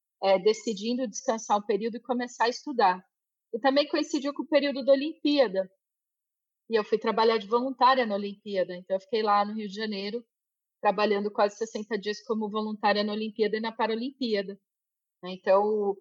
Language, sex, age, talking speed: Portuguese, female, 40-59, 170 wpm